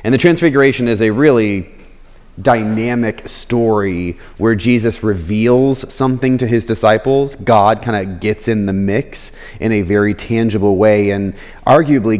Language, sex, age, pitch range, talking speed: English, male, 30-49, 100-130 Hz, 145 wpm